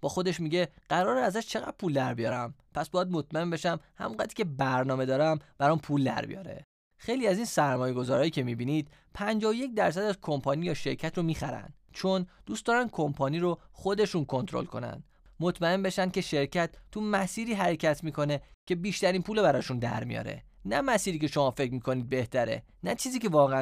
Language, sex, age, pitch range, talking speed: Persian, male, 20-39, 140-195 Hz, 170 wpm